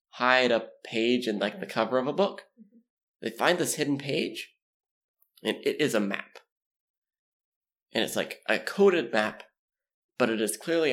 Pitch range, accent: 105-175 Hz, American